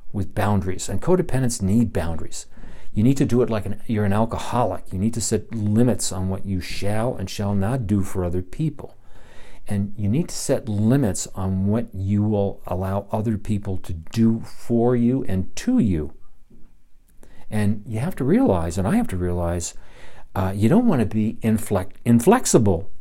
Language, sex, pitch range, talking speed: English, male, 95-120 Hz, 185 wpm